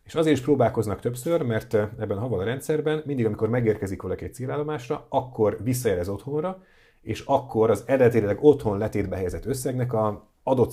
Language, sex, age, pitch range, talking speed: Hungarian, male, 30-49, 95-125 Hz, 170 wpm